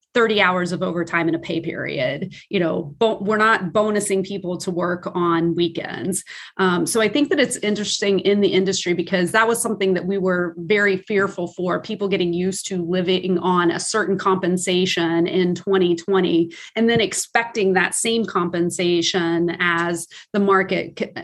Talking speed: 165 wpm